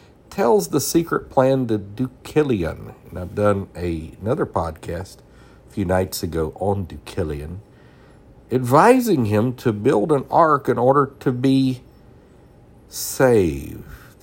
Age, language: 50-69, English